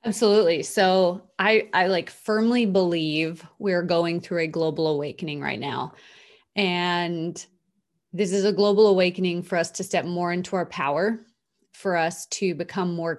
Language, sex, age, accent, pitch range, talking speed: English, female, 30-49, American, 170-195 Hz, 155 wpm